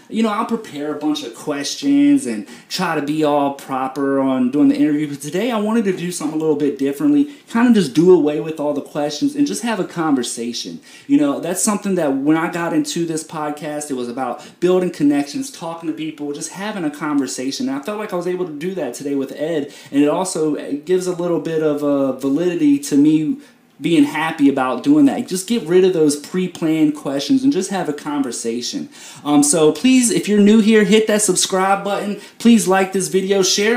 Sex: male